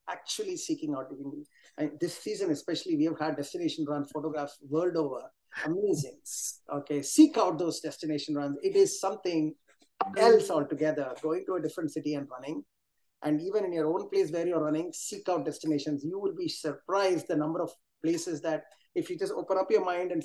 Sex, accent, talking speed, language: male, Indian, 185 wpm, English